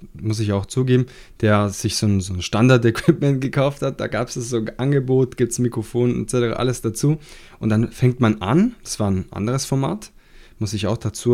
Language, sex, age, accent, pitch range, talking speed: German, male, 20-39, German, 110-135 Hz, 205 wpm